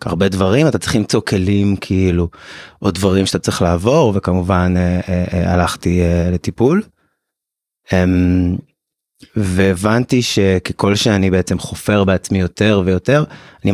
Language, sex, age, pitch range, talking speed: Hebrew, male, 30-49, 95-110 Hz, 105 wpm